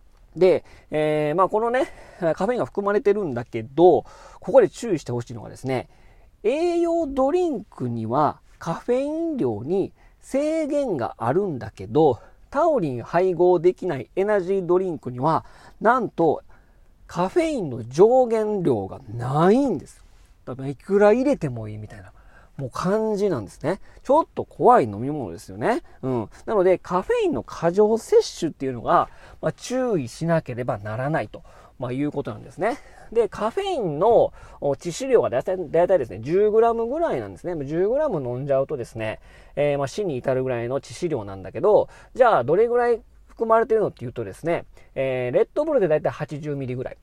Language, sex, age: Japanese, male, 40-59